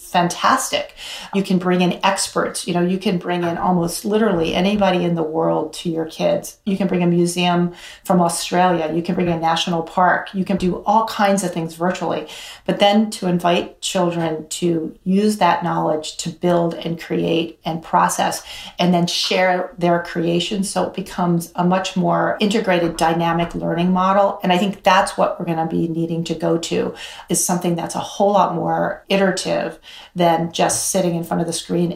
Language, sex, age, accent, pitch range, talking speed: English, female, 40-59, American, 170-190 Hz, 190 wpm